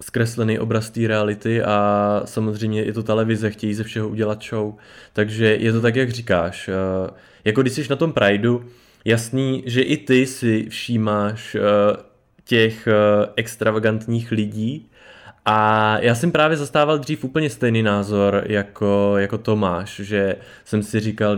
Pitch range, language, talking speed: 105-120 Hz, Czech, 145 wpm